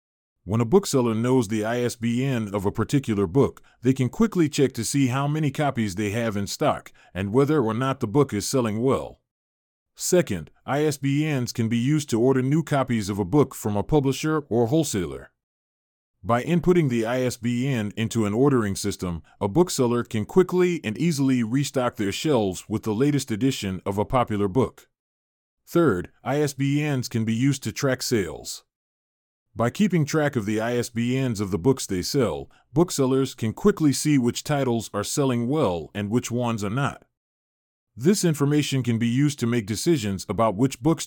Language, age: English, 30-49